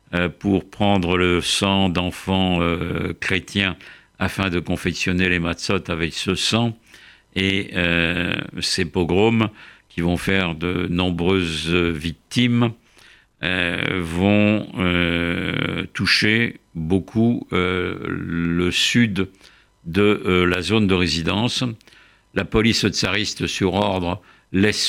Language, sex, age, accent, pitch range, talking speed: French, male, 50-69, French, 90-105 Hz, 110 wpm